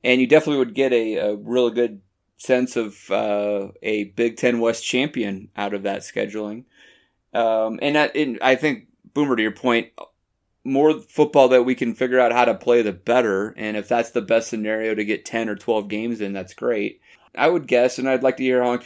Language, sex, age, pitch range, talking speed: English, male, 30-49, 110-130 Hz, 215 wpm